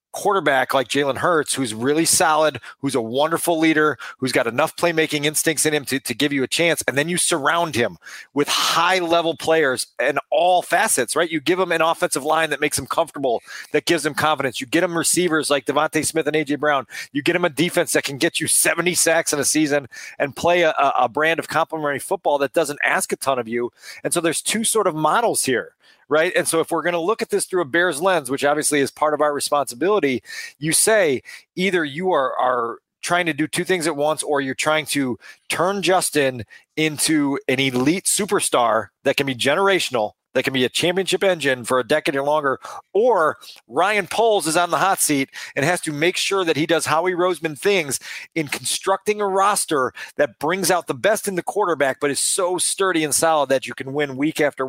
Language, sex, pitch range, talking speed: English, male, 145-175 Hz, 220 wpm